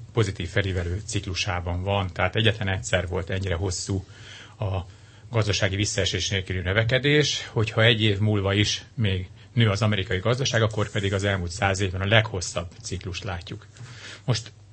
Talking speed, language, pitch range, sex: 145 wpm, Hungarian, 95-115 Hz, male